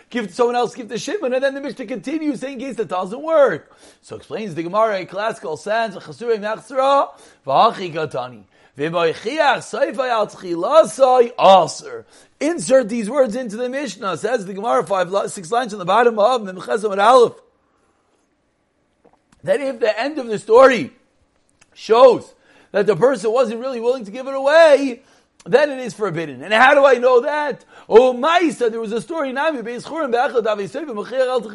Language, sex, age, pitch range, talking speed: English, male, 40-59, 215-270 Hz, 145 wpm